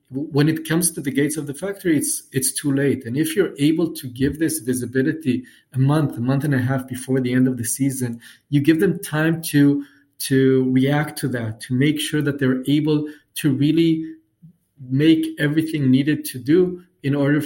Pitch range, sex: 130-150 Hz, male